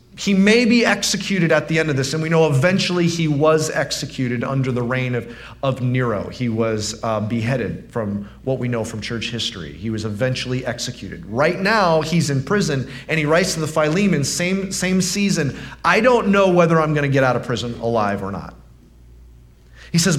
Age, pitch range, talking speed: 30-49, 130-195 Hz, 200 wpm